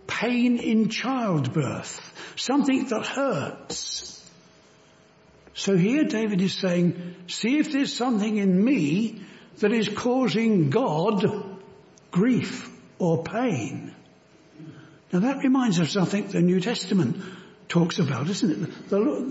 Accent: British